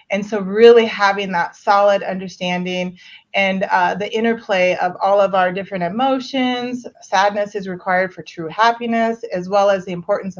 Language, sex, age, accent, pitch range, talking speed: English, female, 30-49, American, 185-220 Hz, 160 wpm